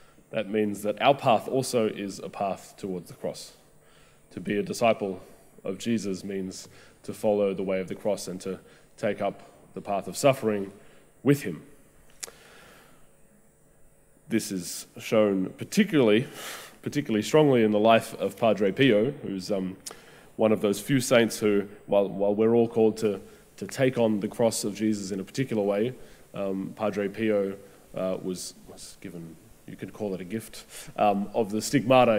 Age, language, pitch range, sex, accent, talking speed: 20-39, English, 100-120 Hz, male, Australian, 170 wpm